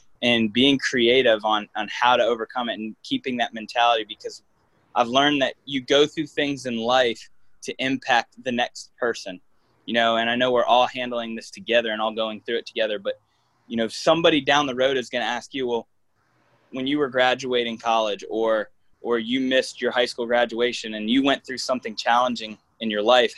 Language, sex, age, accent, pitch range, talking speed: English, male, 10-29, American, 115-135 Hz, 205 wpm